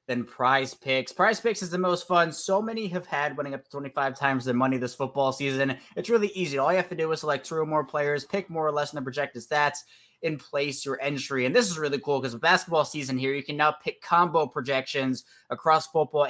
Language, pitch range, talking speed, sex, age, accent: English, 135-165 Hz, 245 wpm, male, 20-39, American